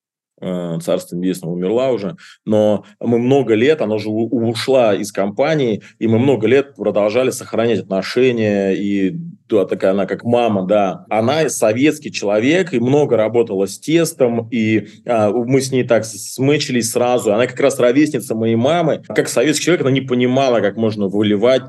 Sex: male